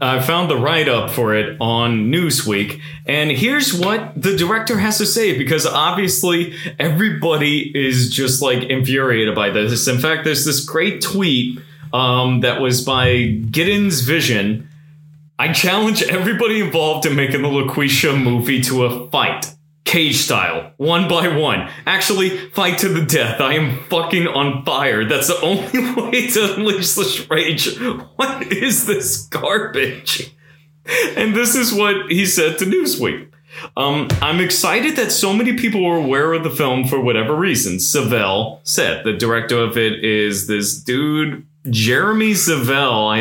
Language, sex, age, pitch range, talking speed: English, male, 30-49, 130-190 Hz, 155 wpm